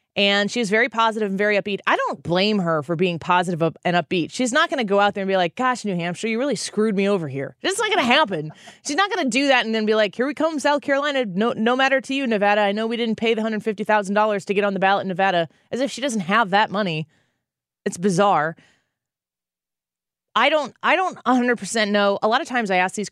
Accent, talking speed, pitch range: American, 255 wpm, 175-230 Hz